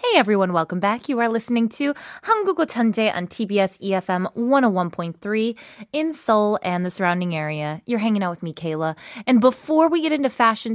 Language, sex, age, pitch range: Korean, female, 20-39, 185-280 Hz